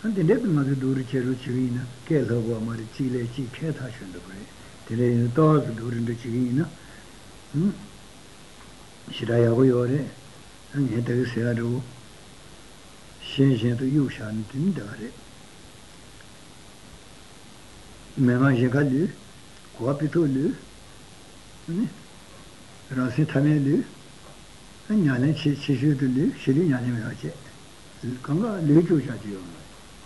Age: 60-79